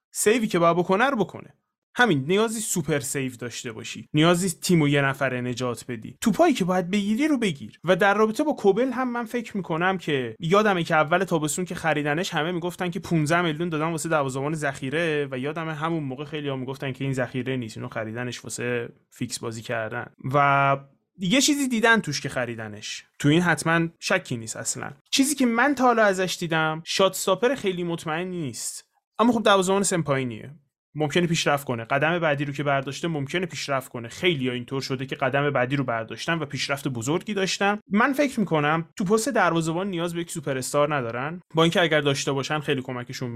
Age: 20-39